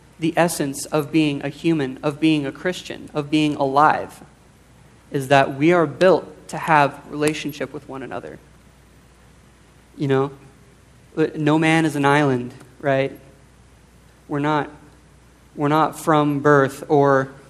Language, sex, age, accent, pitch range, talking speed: English, male, 30-49, American, 135-150 Hz, 135 wpm